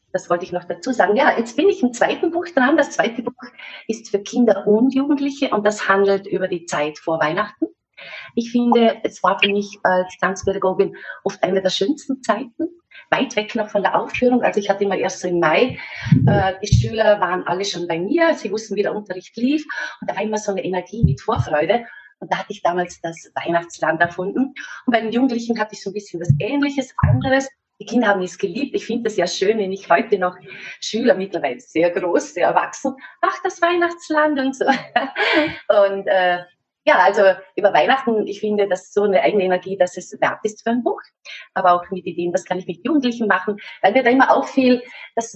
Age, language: 30-49, German